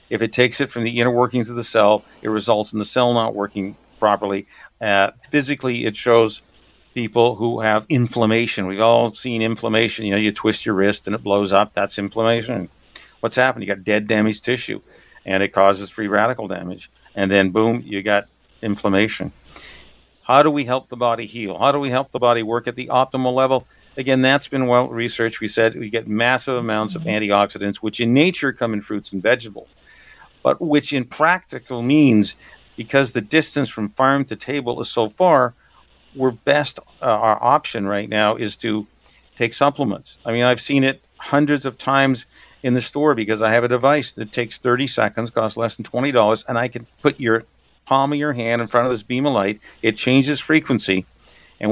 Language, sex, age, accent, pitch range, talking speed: English, male, 50-69, American, 105-130 Hz, 200 wpm